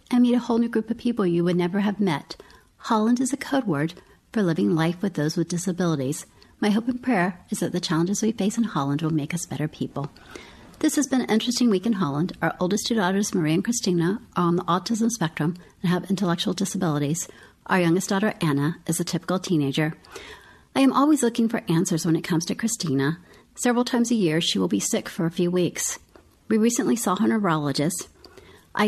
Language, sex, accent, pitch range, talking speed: English, female, American, 160-225 Hz, 215 wpm